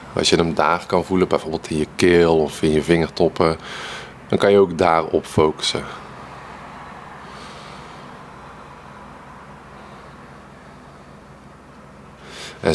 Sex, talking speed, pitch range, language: male, 100 wpm, 80-95 Hz, English